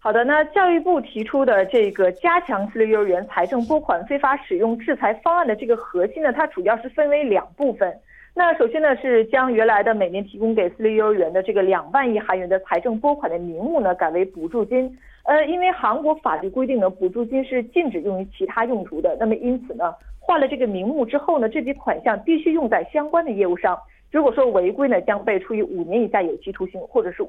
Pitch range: 200-310 Hz